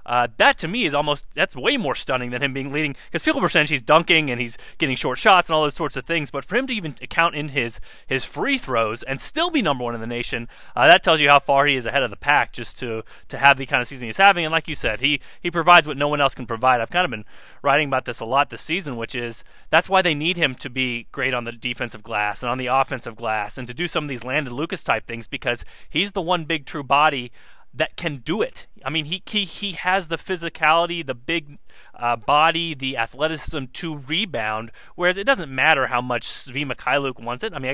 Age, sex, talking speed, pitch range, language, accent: 30-49, male, 260 wpm, 125-165 Hz, English, American